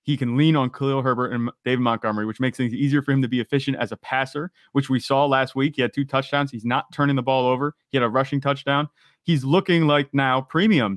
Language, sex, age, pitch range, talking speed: English, male, 30-49, 110-140 Hz, 250 wpm